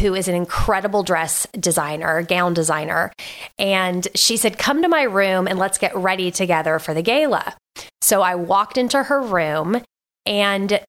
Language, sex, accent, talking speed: English, female, American, 165 wpm